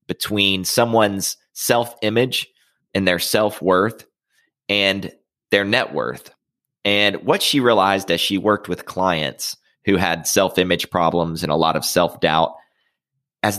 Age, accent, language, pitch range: 30-49, American, English, 85-110 Hz